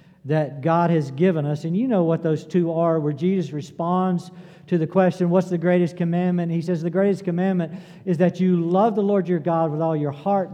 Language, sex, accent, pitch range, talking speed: English, male, American, 155-190 Hz, 220 wpm